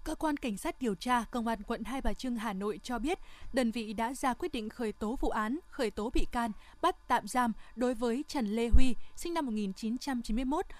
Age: 20-39